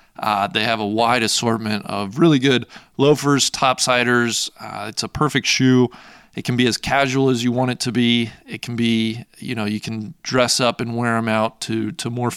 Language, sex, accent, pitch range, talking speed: English, male, American, 115-135 Hz, 210 wpm